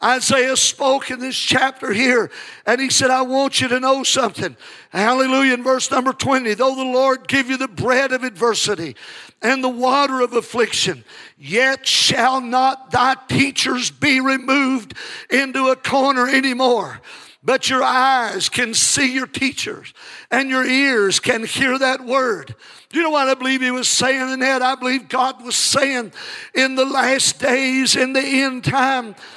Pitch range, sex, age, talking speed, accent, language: 255-270 Hz, male, 50-69, 170 wpm, American, English